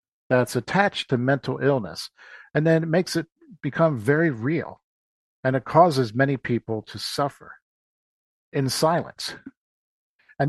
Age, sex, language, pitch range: 50-69, male, English, 115-145 Hz